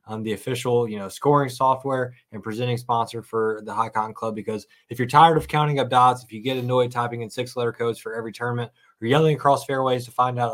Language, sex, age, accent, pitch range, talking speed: English, male, 20-39, American, 110-125 Hz, 220 wpm